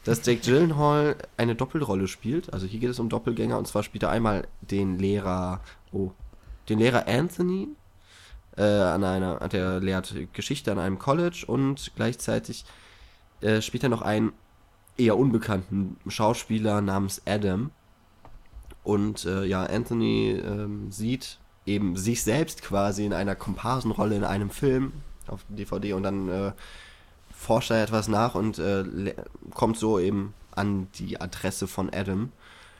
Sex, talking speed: male, 145 wpm